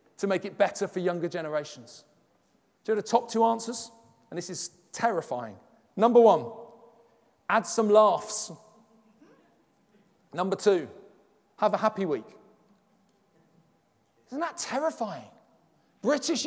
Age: 40-59